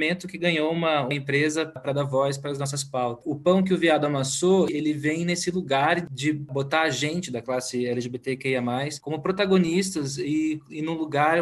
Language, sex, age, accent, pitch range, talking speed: Portuguese, male, 20-39, Brazilian, 140-180 Hz, 185 wpm